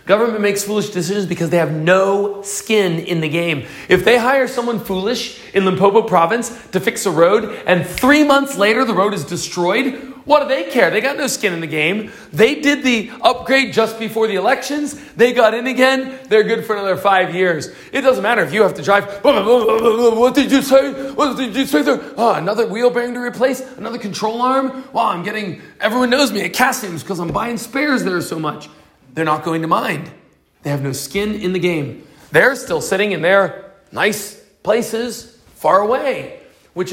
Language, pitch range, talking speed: English, 180-240 Hz, 210 wpm